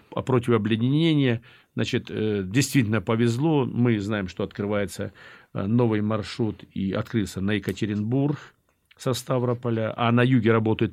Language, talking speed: Russian, 115 wpm